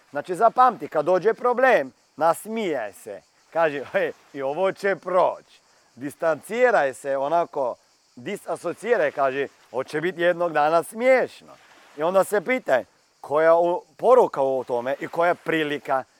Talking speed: 125 wpm